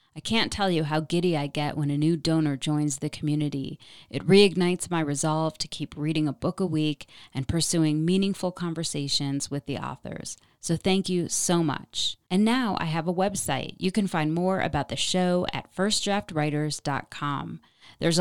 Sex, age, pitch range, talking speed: female, 30-49, 150-180 Hz, 180 wpm